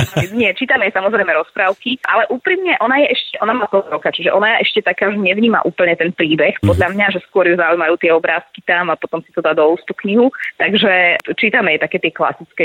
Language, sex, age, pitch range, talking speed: Slovak, female, 20-39, 155-185 Hz, 215 wpm